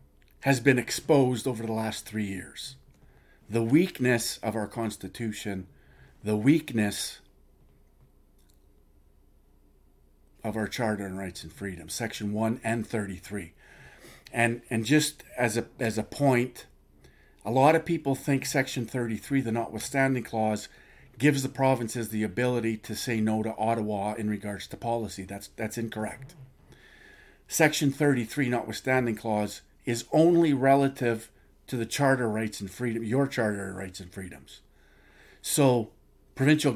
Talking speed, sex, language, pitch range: 130 wpm, male, English, 100-130 Hz